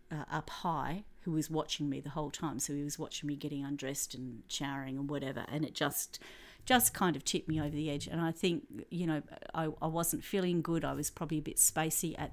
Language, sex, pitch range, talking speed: English, female, 155-210 Hz, 240 wpm